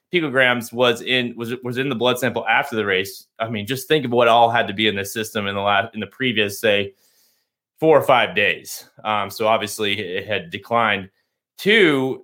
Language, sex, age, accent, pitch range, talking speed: English, male, 30-49, American, 110-140 Hz, 210 wpm